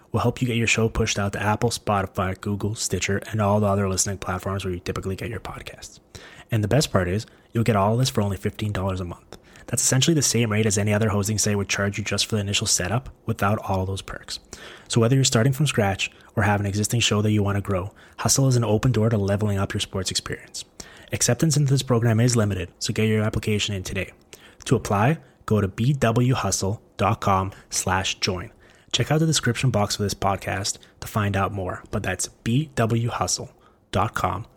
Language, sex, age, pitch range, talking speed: English, male, 20-39, 100-120 Hz, 215 wpm